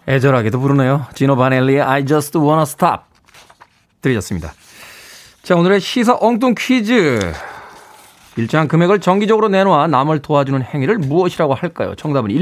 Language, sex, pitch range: Korean, male, 130-195 Hz